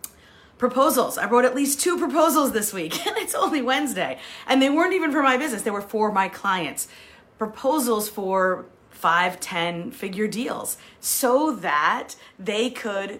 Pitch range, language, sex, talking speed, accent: 190-250 Hz, English, female, 160 wpm, American